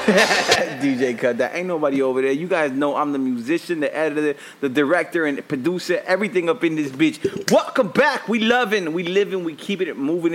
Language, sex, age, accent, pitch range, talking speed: English, male, 30-49, American, 150-225 Hz, 205 wpm